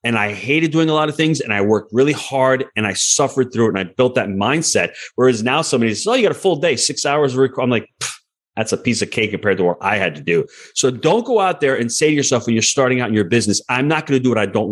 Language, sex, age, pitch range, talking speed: English, male, 30-49, 105-145 Hz, 300 wpm